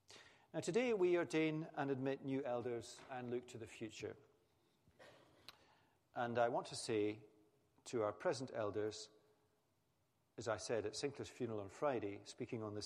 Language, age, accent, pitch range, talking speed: English, 50-69, British, 110-140 Hz, 155 wpm